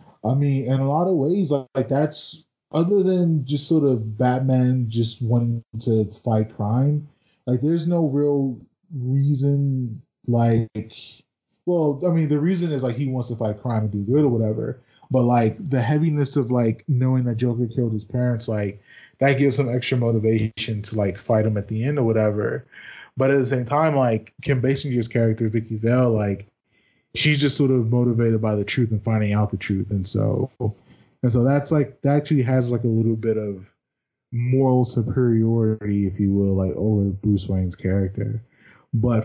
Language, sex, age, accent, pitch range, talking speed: English, male, 20-39, American, 115-145 Hz, 185 wpm